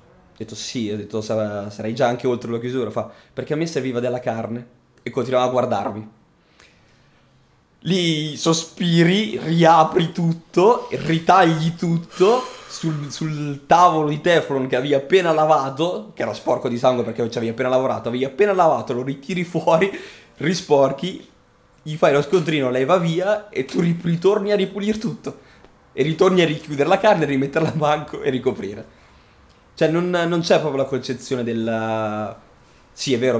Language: Italian